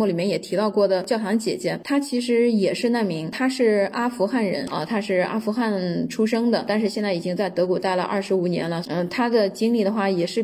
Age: 10-29